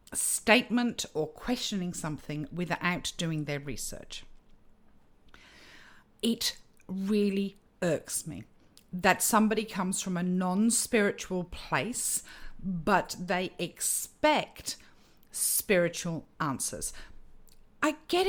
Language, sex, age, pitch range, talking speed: English, female, 50-69, 170-240 Hz, 90 wpm